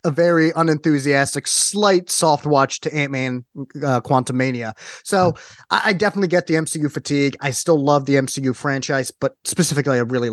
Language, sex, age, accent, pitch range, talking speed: English, male, 30-49, American, 125-155 Hz, 165 wpm